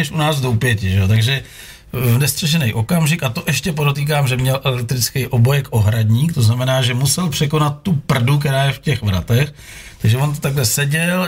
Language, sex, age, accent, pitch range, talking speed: Czech, male, 40-59, native, 120-155 Hz, 195 wpm